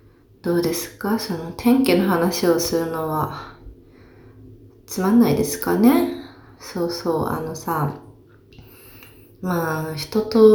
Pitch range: 130-190 Hz